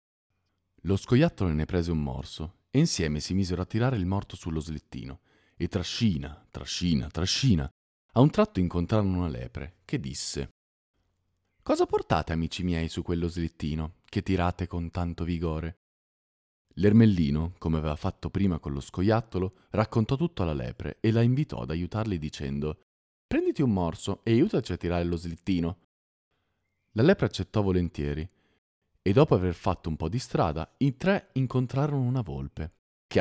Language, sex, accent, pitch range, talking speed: Italian, male, native, 80-105 Hz, 155 wpm